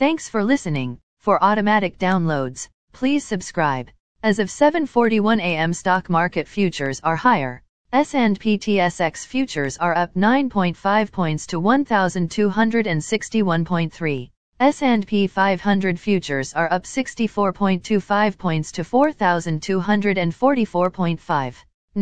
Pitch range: 165-225 Hz